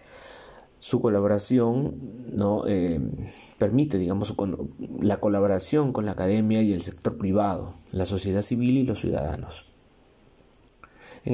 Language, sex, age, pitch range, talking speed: Spanish, male, 30-49, 95-120 Hz, 120 wpm